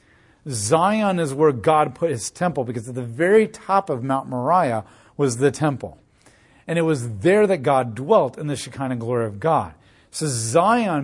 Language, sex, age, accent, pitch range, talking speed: English, male, 40-59, American, 120-165 Hz, 180 wpm